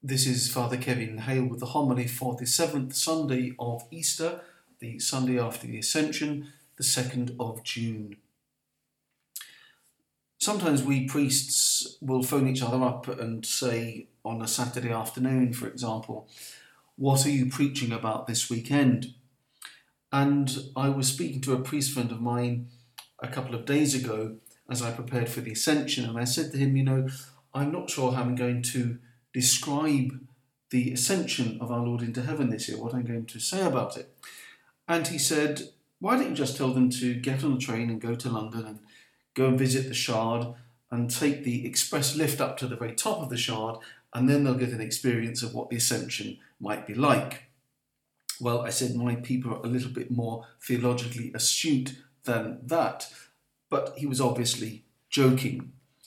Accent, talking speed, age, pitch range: British, 180 wpm, 40-59, 120-135 Hz